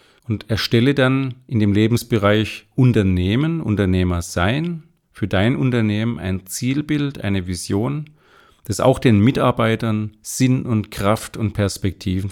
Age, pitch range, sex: 40-59, 95-120 Hz, male